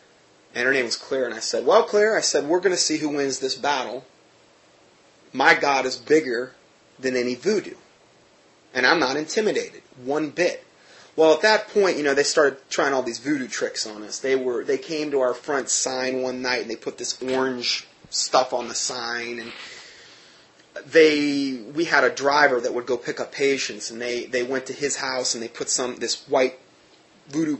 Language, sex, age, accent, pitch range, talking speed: English, male, 30-49, American, 125-165 Hz, 200 wpm